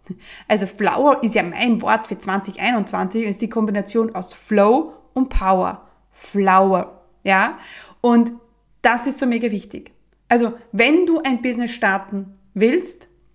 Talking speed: 135 wpm